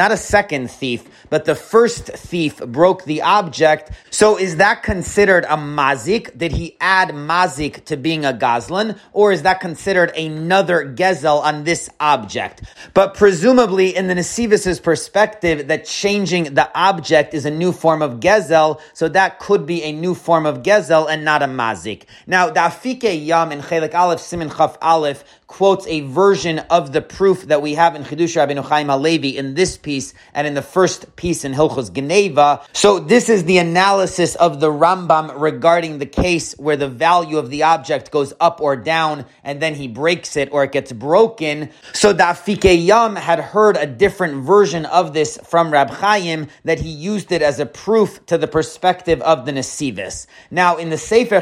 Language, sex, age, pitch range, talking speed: English, male, 30-49, 150-185 Hz, 185 wpm